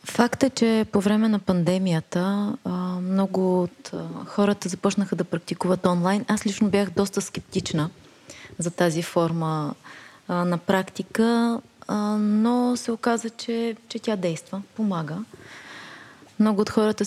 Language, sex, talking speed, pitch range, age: Bulgarian, female, 125 wpm, 175-210 Hz, 20-39